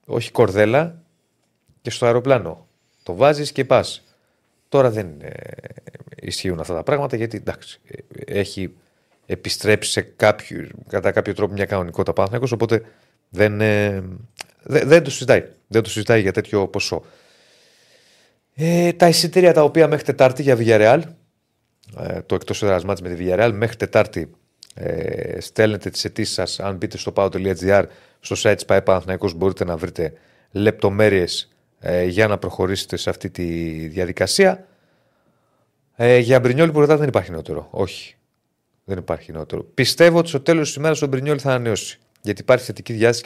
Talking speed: 155 wpm